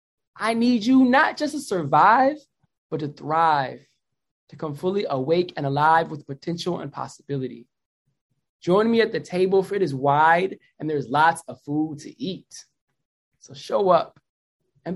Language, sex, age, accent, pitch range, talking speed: English, male, 20-39, American, 155-215 Hz, 160 wpm